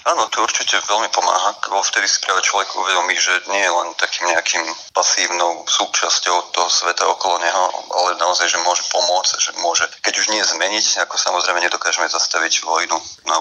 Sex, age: male, 30-49